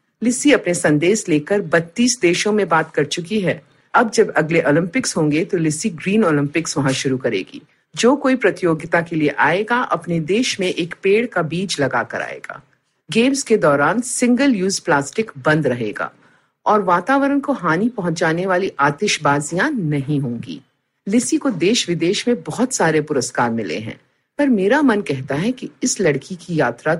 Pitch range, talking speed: 150-230 Hz, 170 wpm